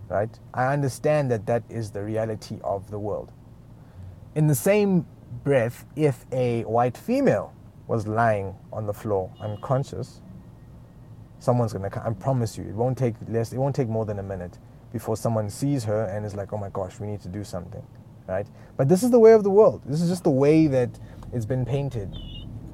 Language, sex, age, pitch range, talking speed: English, male, 30-49, 105-135 Hz, 200 wpm